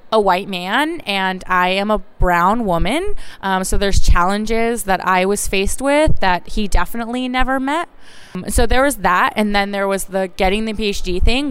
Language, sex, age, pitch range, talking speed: English, female, 20-39, 185-225 Hz, 195 wpm